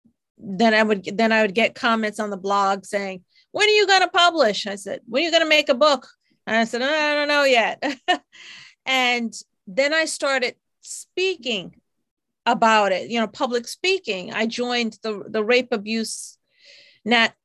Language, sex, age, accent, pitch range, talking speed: English, female, 40-59, American, 205-255 Hz, 185 wpm